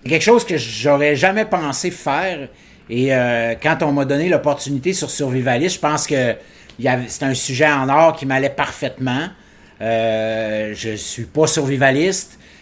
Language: French